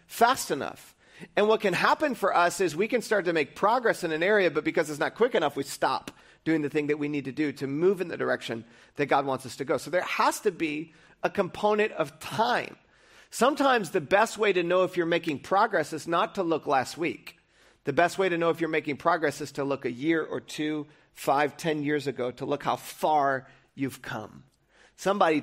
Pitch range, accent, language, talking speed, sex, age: 150-200 Hz, American, English, 230 wpm, male, 40-59